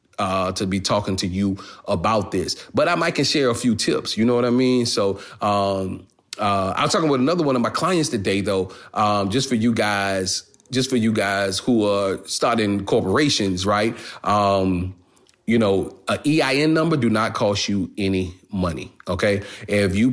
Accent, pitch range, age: American, 95-115 Hz, 30-49